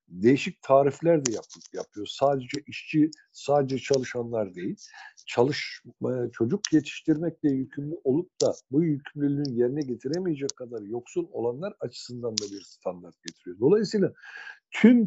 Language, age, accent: Turkish, 60-79, native